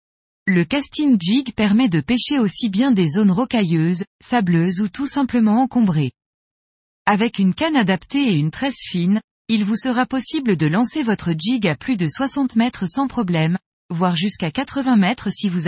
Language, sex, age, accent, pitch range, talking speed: French, female, 20-39, French, 185-245 Hz, 170 wpm